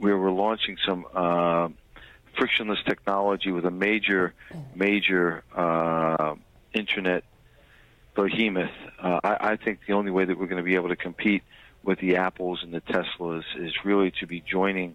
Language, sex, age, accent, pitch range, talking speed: English, male, 40-59, American, 85-100 Hz, 155 wpm